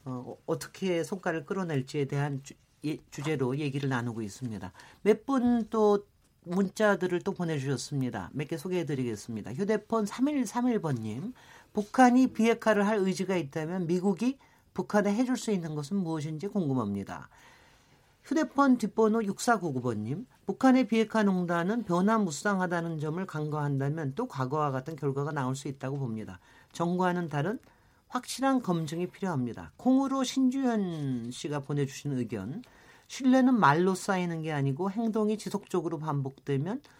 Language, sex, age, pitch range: Korean, male, 40-59, 140-210 Hz